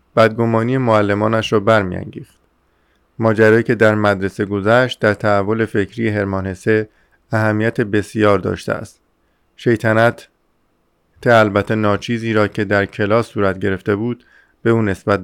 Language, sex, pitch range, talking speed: Persian, male, 100-115 Hz, 120 wpm